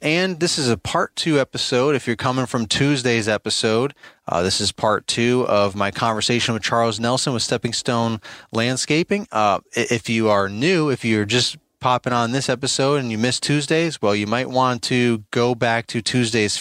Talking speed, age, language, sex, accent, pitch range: 190 wpm, 30-49, English, male, American, 100-125 Hz